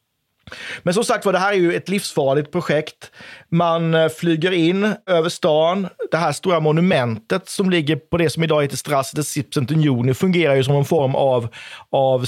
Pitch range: 130-165 Hz